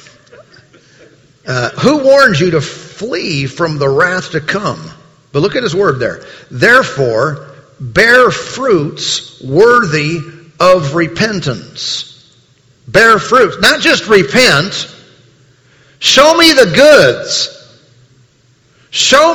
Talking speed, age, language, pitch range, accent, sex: 100 wpm, 50-69, English, 140-215 Hz, American, male